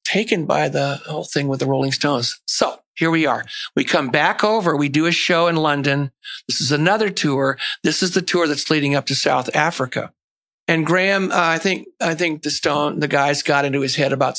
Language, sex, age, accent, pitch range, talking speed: English, male, 60-79, American, 140-185 Hz, 220 wpm